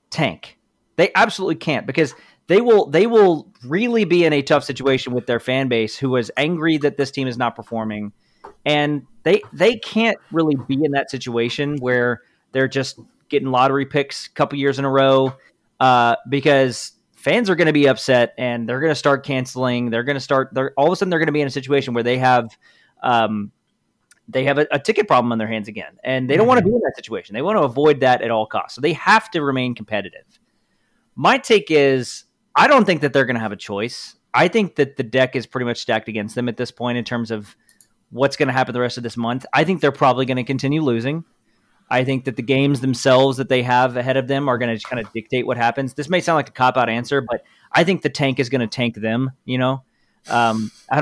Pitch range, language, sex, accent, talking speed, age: 120-145 Hz, English, male, American, 235 wpm, 30-49